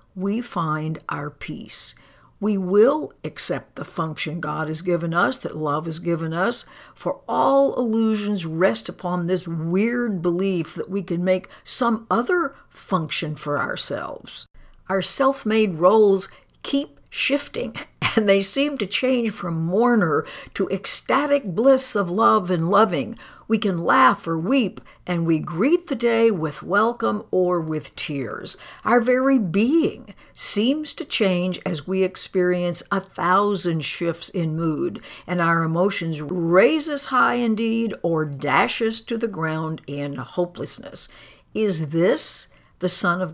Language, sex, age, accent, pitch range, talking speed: English, female, 60-79, American, 170-230 Hz, 145 wpm